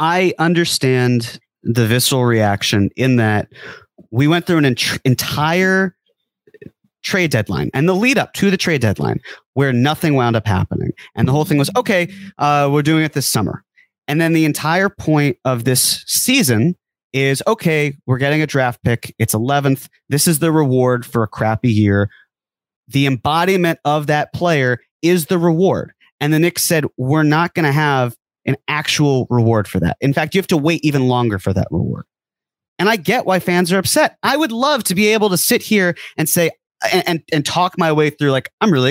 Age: 30-49